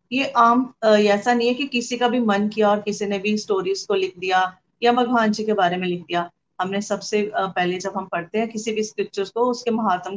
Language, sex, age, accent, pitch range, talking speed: Hindi, female, 30-49, native, 185-225 Hz, 235 wpm